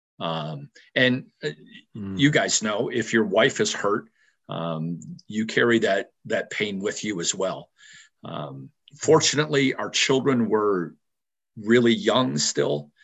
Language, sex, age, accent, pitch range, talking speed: English, male, 50-69, American, 110-135 Hz, 130 wpm